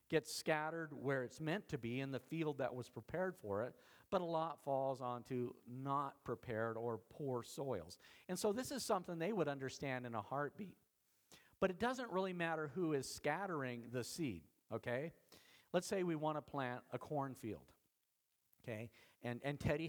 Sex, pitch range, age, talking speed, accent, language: male, 125-175 Hz, 50-69, 180 wpm, American, English